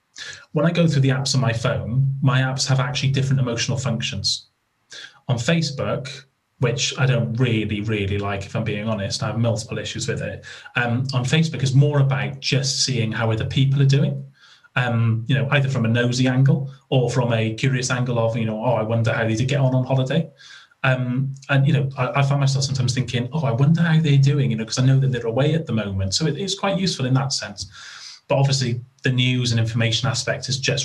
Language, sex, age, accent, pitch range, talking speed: English, male, 30-49, British, 115-135 Hz, 230 wpm